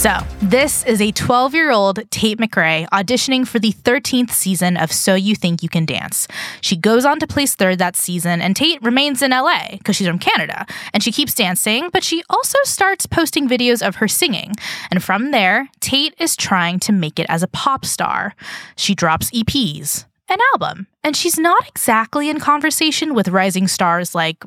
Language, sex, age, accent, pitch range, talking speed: English, female, 10-29, American, 185-270 Hz, 190 wpm